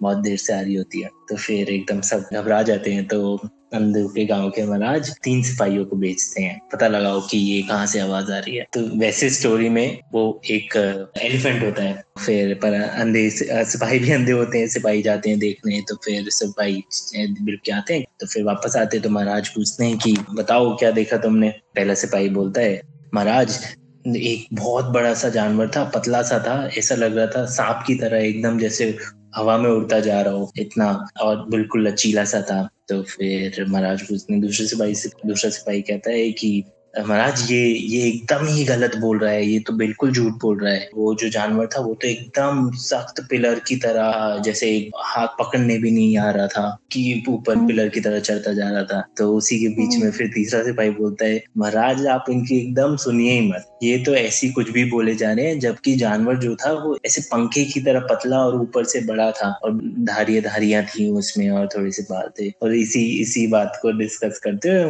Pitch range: 105-120 Hz